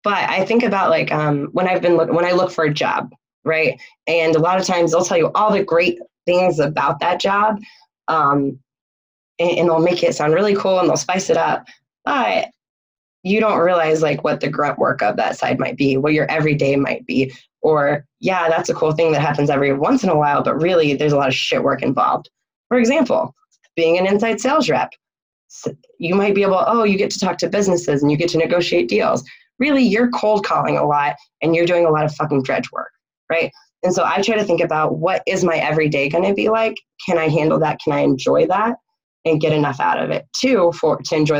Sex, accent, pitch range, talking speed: female, American, 150-195 Hz, 235 wpm